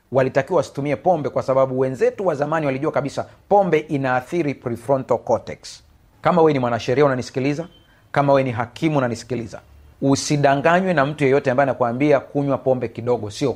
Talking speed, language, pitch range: 150 wpm, Swahili, 125-150 Hz